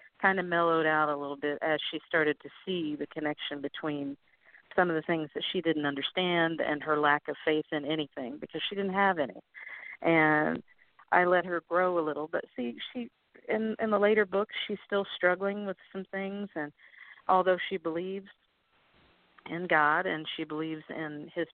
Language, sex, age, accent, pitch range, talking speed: English, female, 50-69, American, 150-195 Hz, 185 wpm